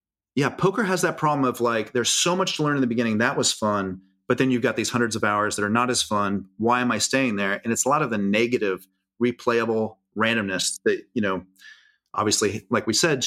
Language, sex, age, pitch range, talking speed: English, male, 30-49, 110-140 Hz, 235 wpm